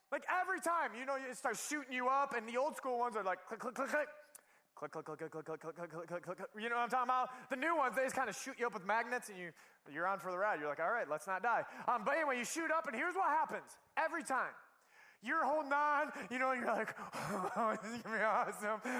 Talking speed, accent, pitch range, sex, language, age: 290 wpm, American, 245-335 Hz, male, English, 20-39